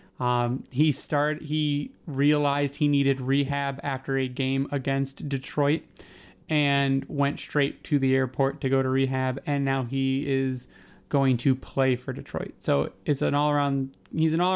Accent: American